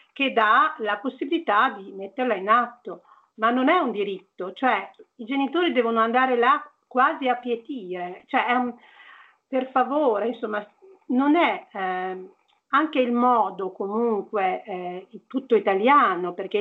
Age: 50-69